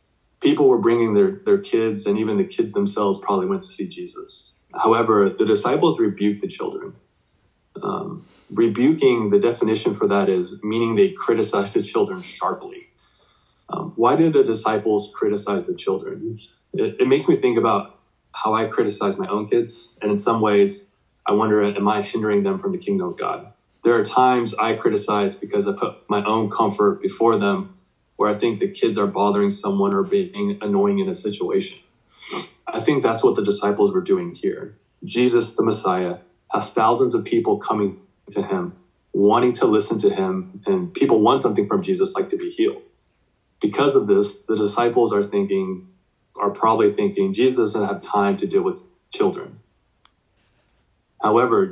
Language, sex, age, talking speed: English, male, 20-39, 175 wpm